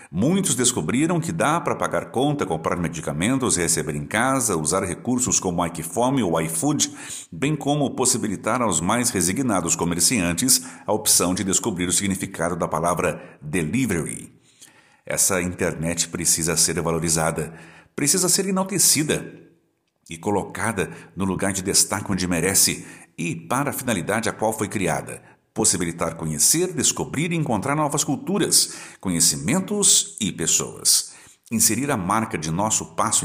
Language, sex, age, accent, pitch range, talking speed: Portuguese, male, 60-79, Brazilian, 85-130 Hz, 140 wpm